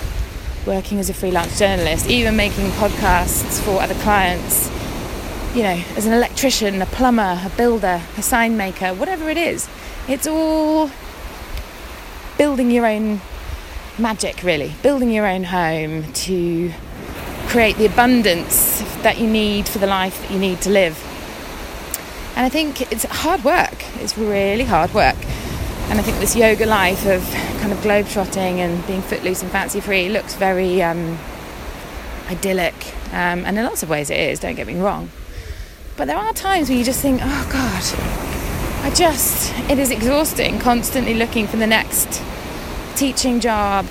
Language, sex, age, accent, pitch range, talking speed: English, female, 20-39, British, 185-235 Hz, 160 wpm